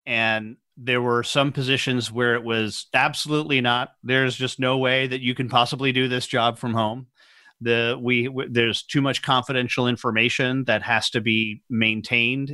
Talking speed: 170 wpm